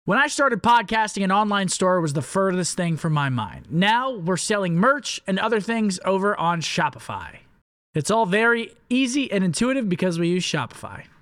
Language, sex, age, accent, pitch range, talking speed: English, male, 20-39, American, 170-215 Hz, 180 wpm